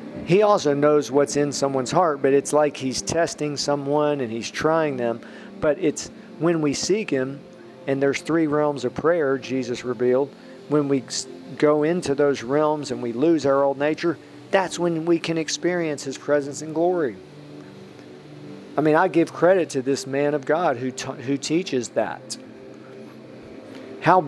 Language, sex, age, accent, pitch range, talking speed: English, male, 40-59, American, 130-160 Hz, 170 wpm